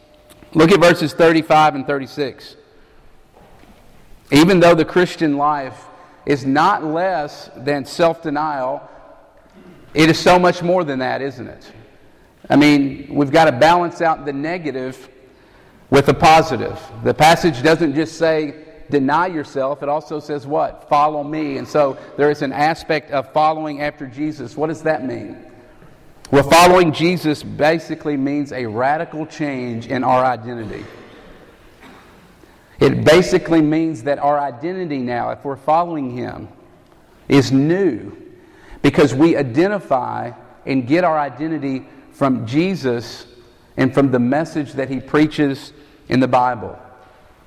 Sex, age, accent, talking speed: male, 40-59, American, 135 wpm